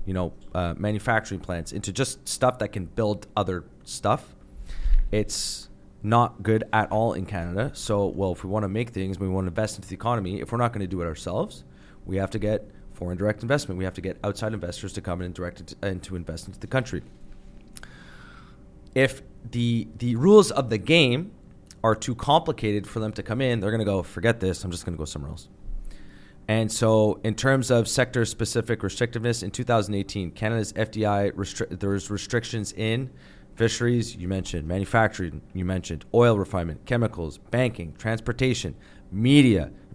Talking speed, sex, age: 190 wpm, male, 30-49